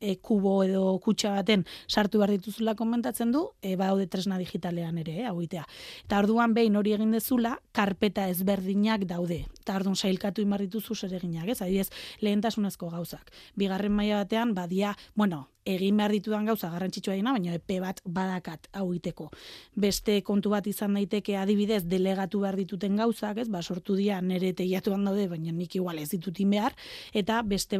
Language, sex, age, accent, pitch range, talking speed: Spanish, female, 20-39, Spanish, 190-220 Hz, 160 wpm